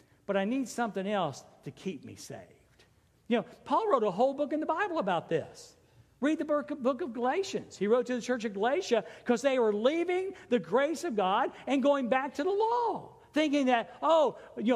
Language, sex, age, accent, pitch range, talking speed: English, male, 60-79, American, 185-270 Hz, 205 wpm